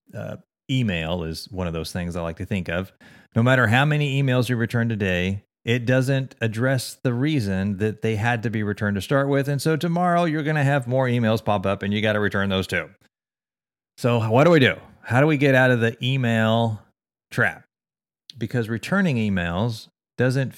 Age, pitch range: 30-49, 100-135 Hz